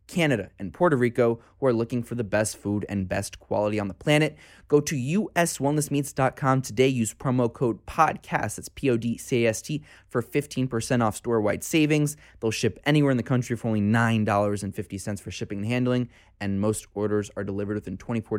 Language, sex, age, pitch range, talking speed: English, male, 20-39, 95-115 Hz, 170 wpm